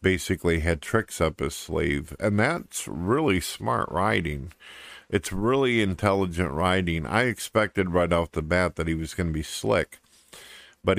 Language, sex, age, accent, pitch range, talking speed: English, male, 50-69, American, 85-100 Hz, 160 wpm